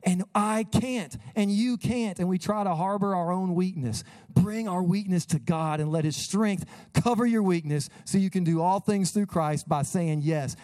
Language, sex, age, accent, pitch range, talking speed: English, male, 40-59, American, 150-185 Hz, 210 wpm